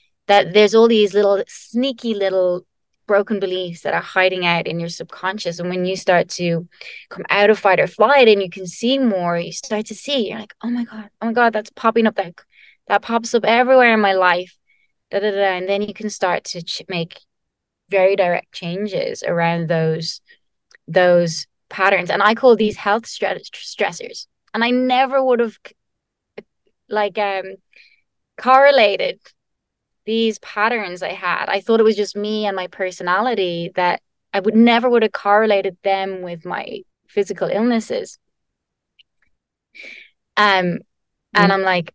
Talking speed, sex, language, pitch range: 165 wpm, female, English, 185-225 Hz